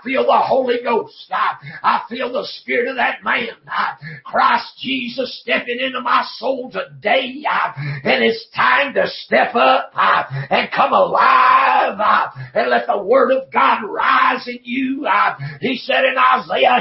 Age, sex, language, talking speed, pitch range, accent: 50-69, male, English, 165 wpm, 195-260 Hz, American